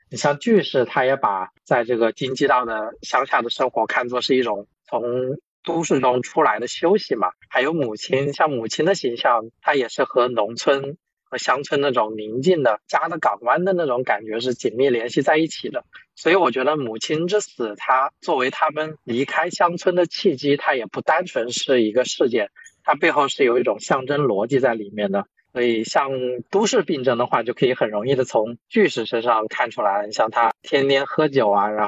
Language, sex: Chinese, male